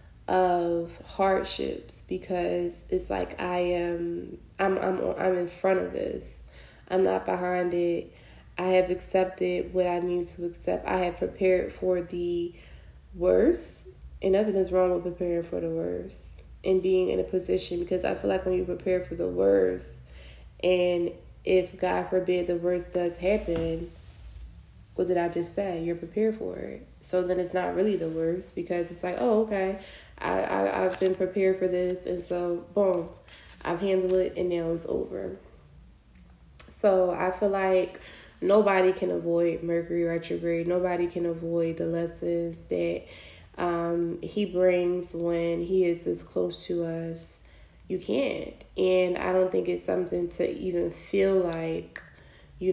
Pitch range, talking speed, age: 165-185 Hz, 160 wpm, 20-39